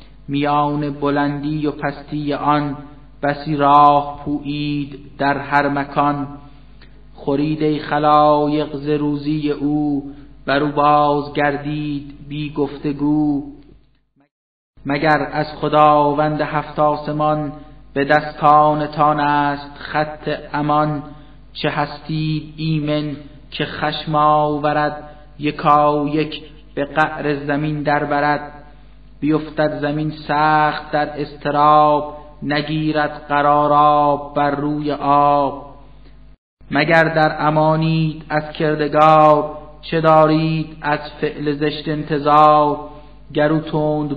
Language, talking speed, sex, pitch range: Persian, 90 wpm, male, 145-150 Hz